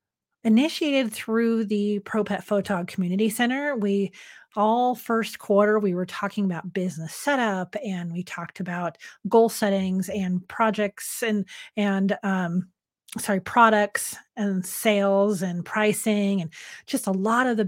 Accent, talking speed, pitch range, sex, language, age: American, 135 wpm, 195-230 Hz, female, English, 40-59